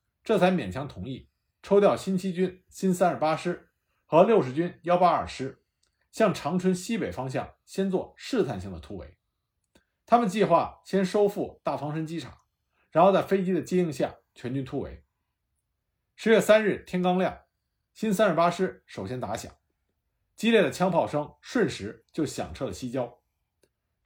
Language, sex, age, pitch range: Chinese, male, 50-69, 145-200 Hz